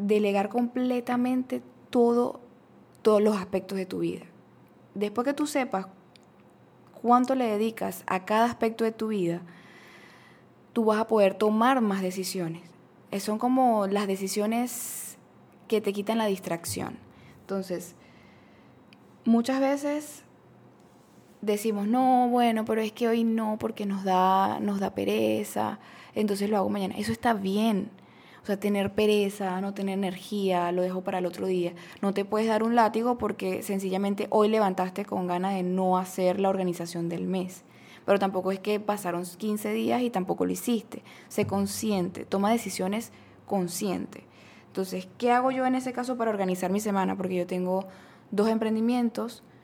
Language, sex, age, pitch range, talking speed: Spanish, female, 10-29, 190-225 Hz, 150 wpm